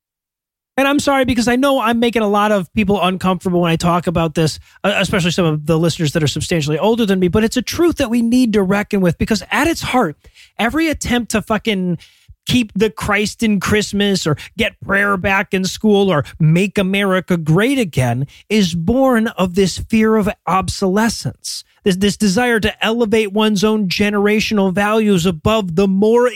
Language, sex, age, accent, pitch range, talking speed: English, male, 30-49, American, 190-235 Hz, 185 wpm